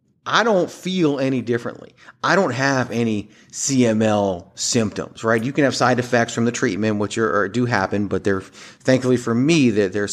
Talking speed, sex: 190 wpm, male